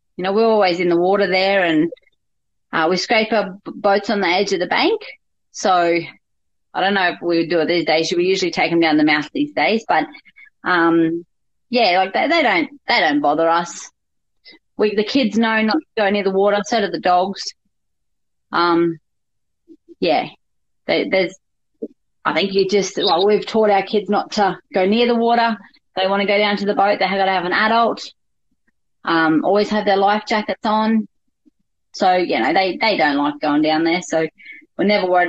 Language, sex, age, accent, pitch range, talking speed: English, female, 30-49, Australian, 185-230 Hz, 205 wpm